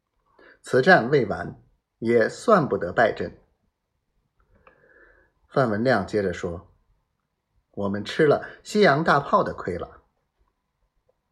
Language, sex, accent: Chinese, male, native